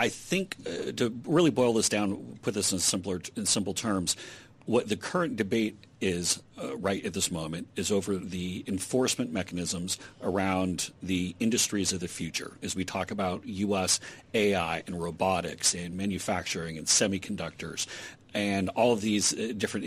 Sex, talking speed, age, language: male, 165 wpm, 40-59, English